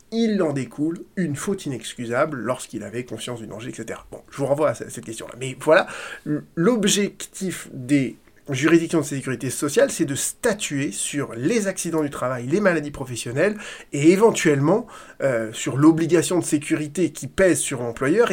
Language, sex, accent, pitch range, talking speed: French, male, French, 135-195 Hz, 160 wpm